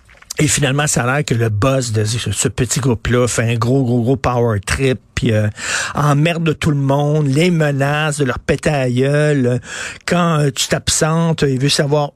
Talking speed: 195 wpm